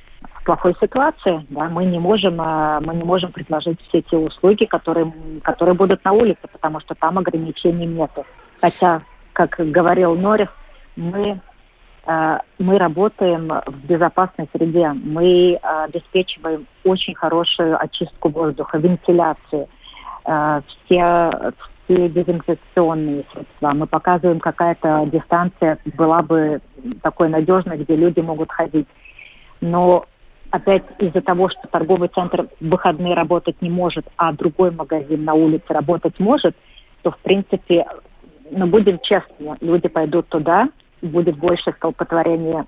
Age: 40-59